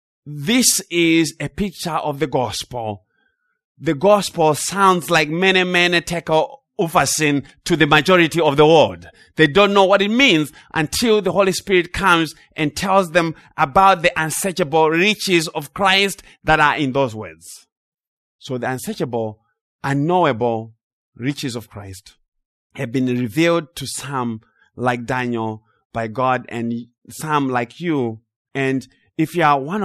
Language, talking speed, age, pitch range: English, 145 wpm, 30-49, 120-170 Hz